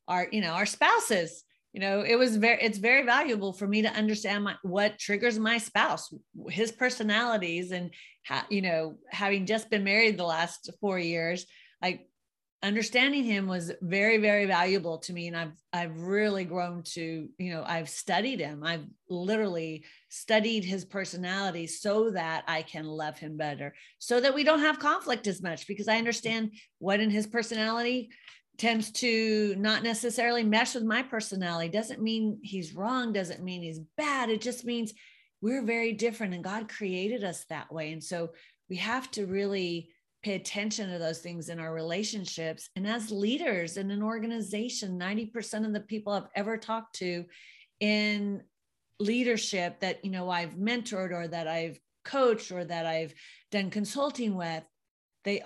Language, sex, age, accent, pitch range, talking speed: English, female, 40-59, American, 175-225 Hz, 170 wpm